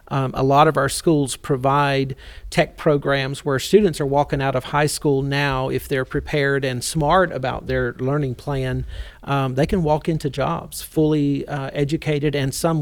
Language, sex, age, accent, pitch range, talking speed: English, male, 40-59, American, 135-160 Hz, 180 wpm